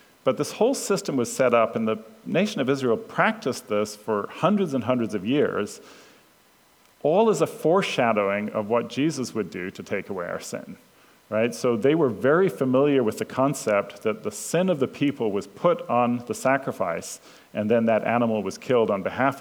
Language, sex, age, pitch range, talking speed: English, male, 40-59, 105-130 Hz, 190 wpm